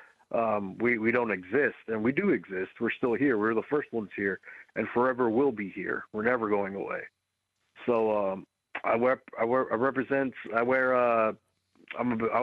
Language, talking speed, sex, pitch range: English, 195 wpm, male, 105-115 Hz